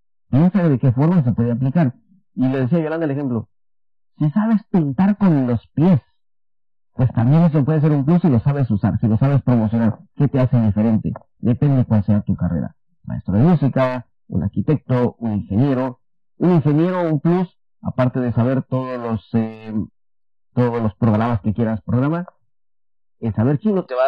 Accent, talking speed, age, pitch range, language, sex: Mexican, 190 wpm, 50-69, 110-155 Hz, English, male